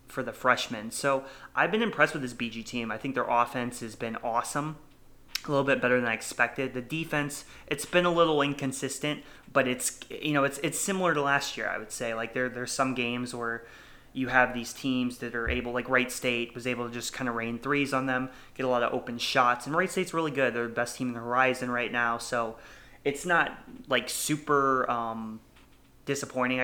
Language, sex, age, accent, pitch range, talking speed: English, male, 20-39, American, 120-135 Hz, 220 wpm